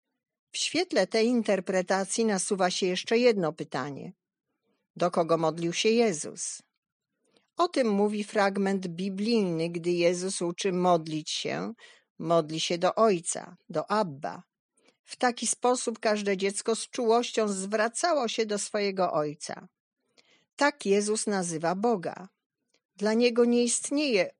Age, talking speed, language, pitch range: 50-69, 125 wpm, Polish, 185-230 Hz